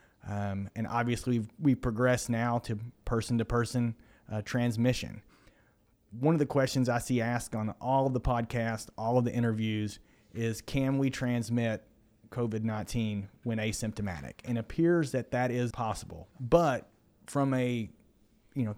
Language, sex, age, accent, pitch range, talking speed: English, male, 30-49, American, 110-125 Hz, 145 wpm